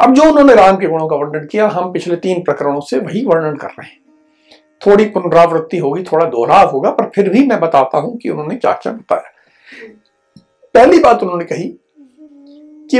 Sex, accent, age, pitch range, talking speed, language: male, native, 60-79, 215-305 Hz, 185 wpm, Hindi